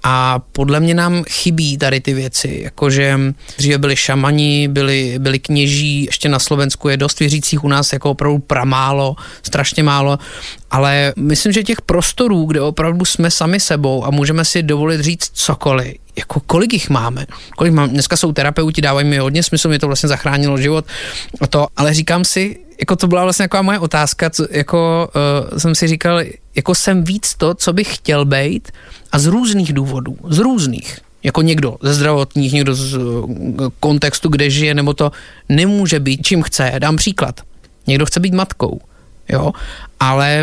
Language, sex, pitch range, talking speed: Slovak, male, 140-170 Hz, 175 wpm